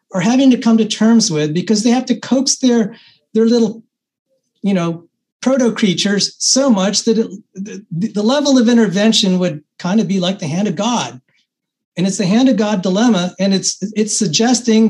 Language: English